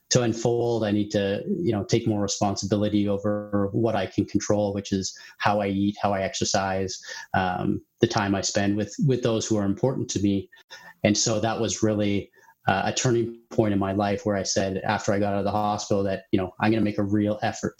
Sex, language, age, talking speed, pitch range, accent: male, English, 30-49, 230 wpm, 100-115 Hz, American